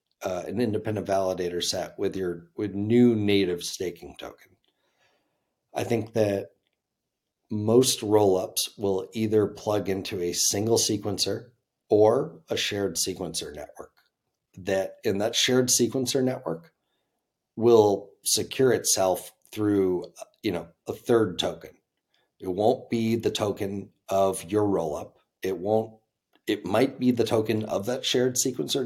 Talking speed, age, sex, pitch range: 130 wpm, 40-59, male, 90-110 Hz